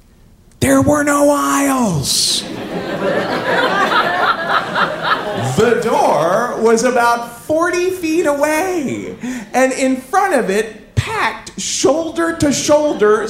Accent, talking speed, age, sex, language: American, 80 wpm, 40-59, male, English